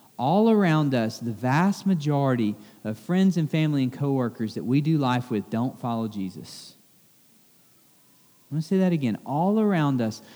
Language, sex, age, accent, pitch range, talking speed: English, male, 40-59, American, 150-230 Hz, 170 wpm